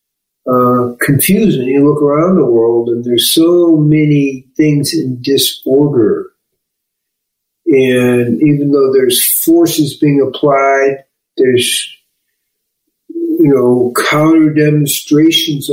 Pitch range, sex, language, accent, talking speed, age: 135-180 Hz, male, English, American, 100 wpm, 50-69